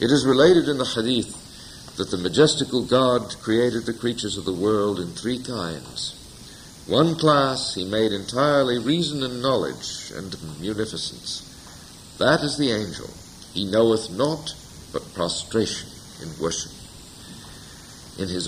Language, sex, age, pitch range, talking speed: English, male, 60-79, 90-130 Hz, 135 wpm